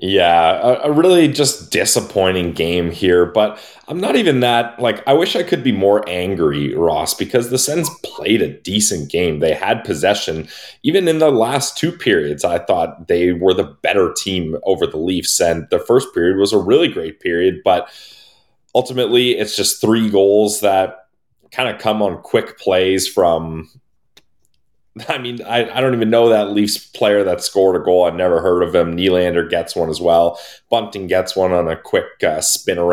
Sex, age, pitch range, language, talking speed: male, 20-39, 90-120 Hz, English, 190 wpm